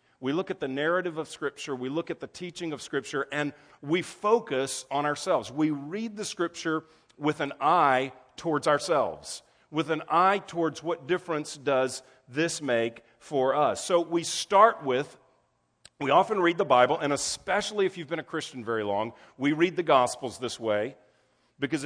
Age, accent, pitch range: 40-59, American, 135-175 Hz